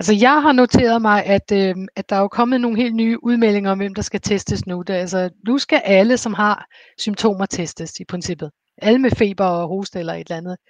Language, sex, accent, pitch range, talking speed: Danish, female, native, 180-210 Hz, 235 wpm